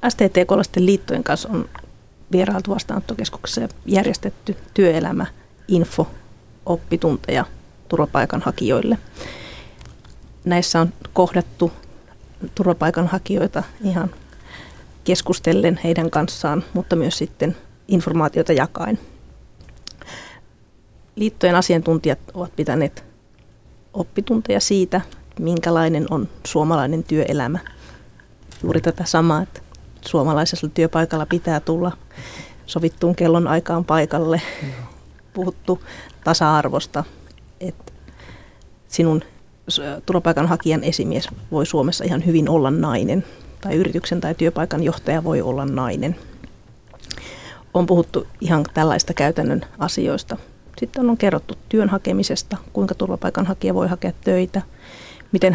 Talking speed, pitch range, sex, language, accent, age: 90 wpm, 160-185 Hz, female, Finnish, native, 30-49